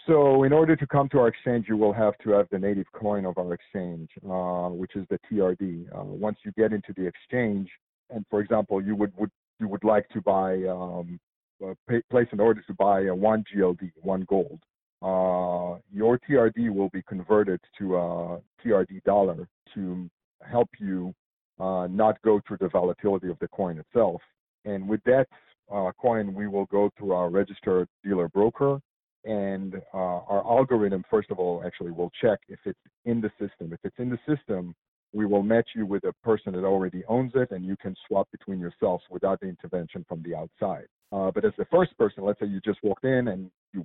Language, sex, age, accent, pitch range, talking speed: English, male, 50-69, American, 90-110 Hz, 205 wpm